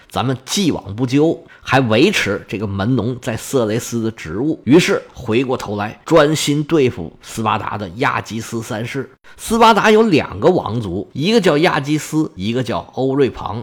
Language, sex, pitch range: Chinese, male, 110-160 Hz